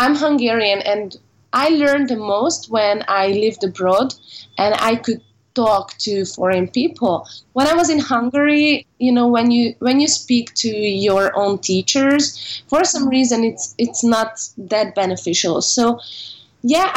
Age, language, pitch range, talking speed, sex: 20-39, Vietnamese, 200-255 Hz, 155 wpm, female